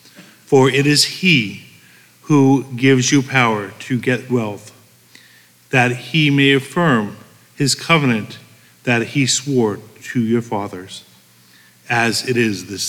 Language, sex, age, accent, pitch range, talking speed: English, male, 50-69, American, 110-135 Hz, 125 wpm